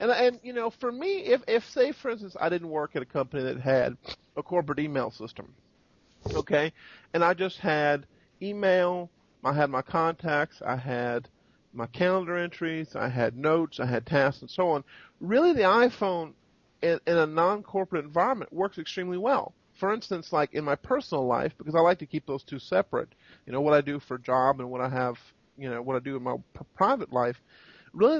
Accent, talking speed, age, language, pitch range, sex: American, 200 wpm, 40-59, English, 140-190 Hz, male